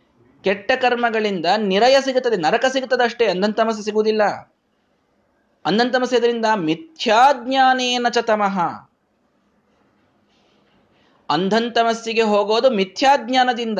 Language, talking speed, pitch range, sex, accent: Kannada, 70 wpm, 155-235 Hz, male, native